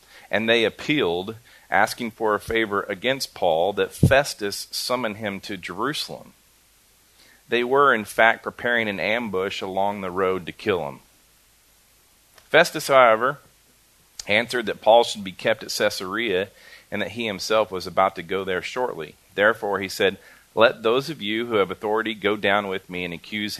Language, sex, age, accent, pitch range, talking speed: English, male, 40-59, American, 90-110 Hz, 165 wpm